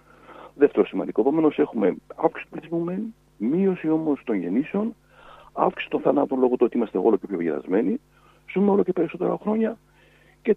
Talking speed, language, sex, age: 160 wpm, Greek, male, 60-79